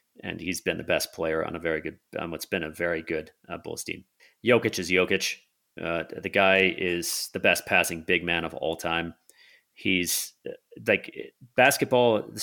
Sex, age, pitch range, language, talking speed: male, 40-59, 85-95 Hz, English, 180 wpm